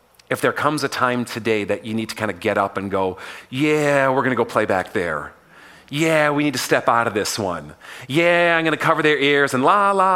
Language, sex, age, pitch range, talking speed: English, male, 40-59, 110-150 Hz, 255 wpm